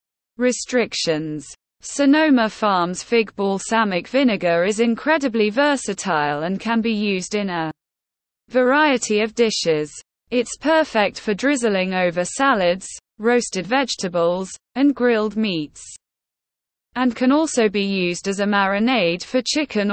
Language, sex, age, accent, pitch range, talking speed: English, female, 20-39, British, 185-250 Hz, 115 wpm